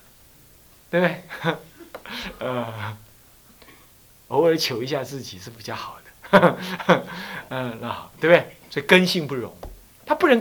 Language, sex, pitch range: Chinese, male, 120-190 Hz